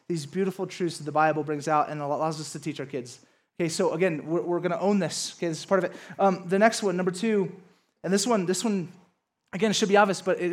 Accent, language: American, English